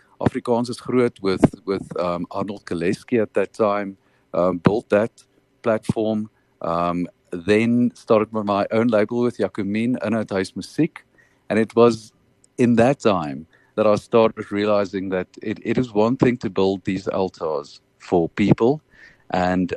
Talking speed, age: 150 wpm, 50-69